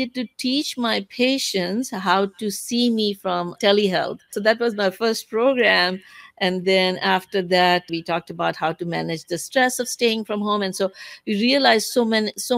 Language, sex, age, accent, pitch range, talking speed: English, female, 60-79, Indian, 180-230 Hz, 180 wpm